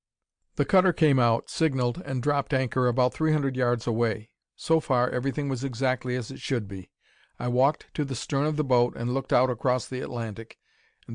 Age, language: 50-69, English